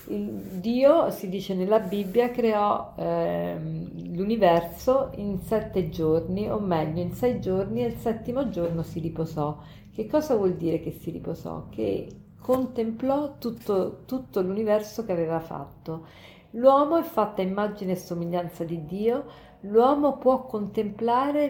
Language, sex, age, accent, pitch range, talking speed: Italian, female, 50-69, native, 175-225 Hz, 135 wpm